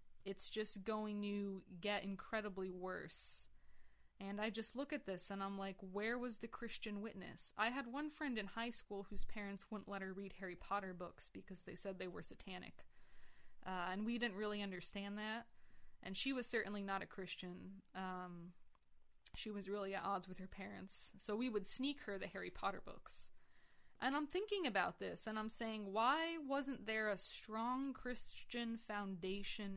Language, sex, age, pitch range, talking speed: English, female, 20-39, 195-235 Hz, 180 wpm